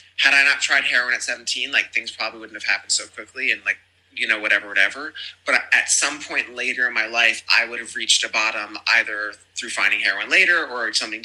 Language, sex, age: English, male, 20-39